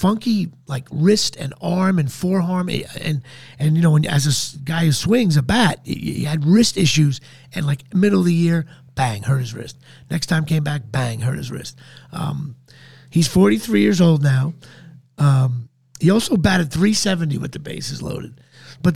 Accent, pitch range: American, 135-185 Hz